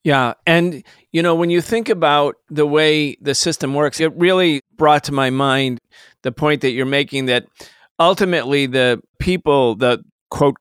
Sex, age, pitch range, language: male, 40-59, 130-165 Hz, English